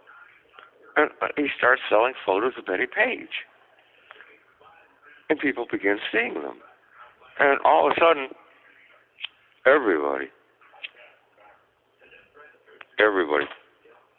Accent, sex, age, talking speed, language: American, male, 60-79, 85 wpm, English